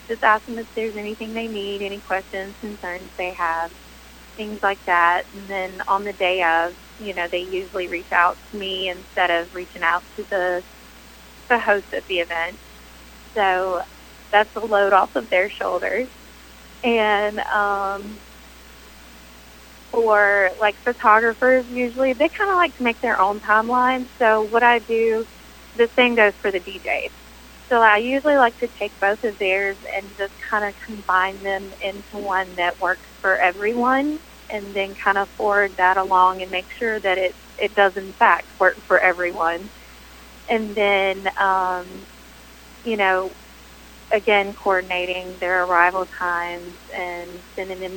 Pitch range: 175-210 Hz